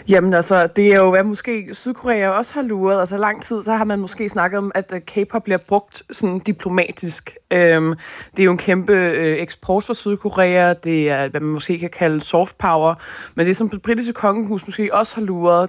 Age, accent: 20-39, native